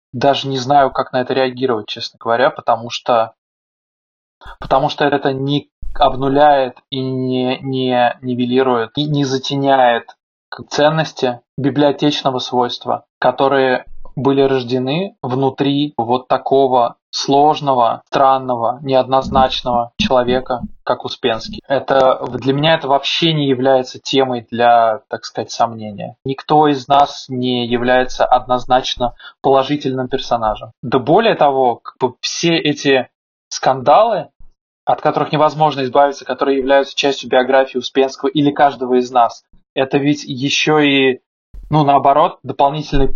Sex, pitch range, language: male, 125-140 Hz, Russian